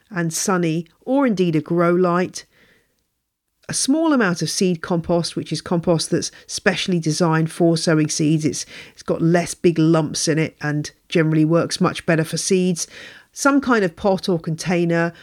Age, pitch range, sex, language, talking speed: 40-59, 160-240 Hz, female, English, 170 wpm